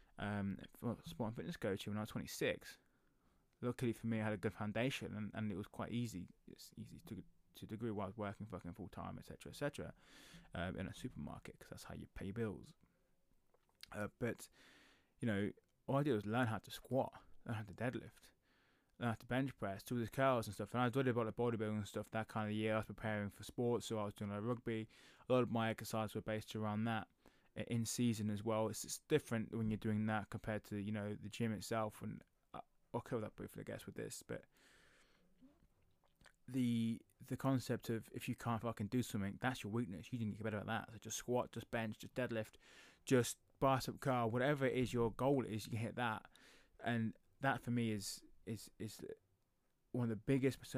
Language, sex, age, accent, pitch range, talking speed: English, male, 20-39, British, 105-125 Hz, 225 wpm